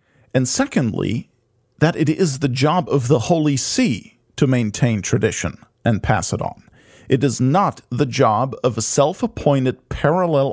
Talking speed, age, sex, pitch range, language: 155 wpm, 40-59, male, 115-145 Hz, English